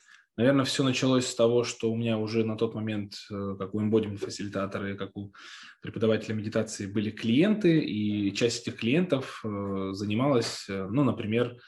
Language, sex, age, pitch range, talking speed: Russian, male, 20-39, 100-120 Hz, 145 wpm